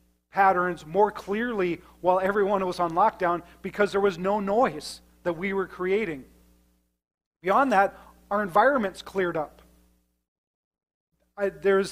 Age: 40-59